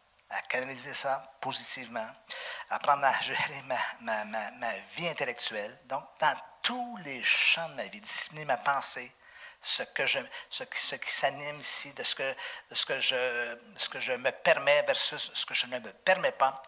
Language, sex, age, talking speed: French, male, 50-69, 195 wpm